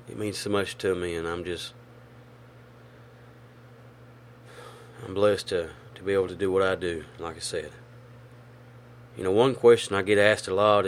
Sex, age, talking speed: male, 30-49, 175 wpm